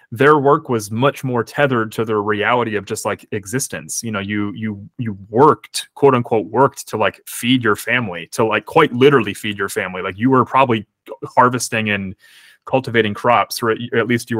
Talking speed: 190 wpm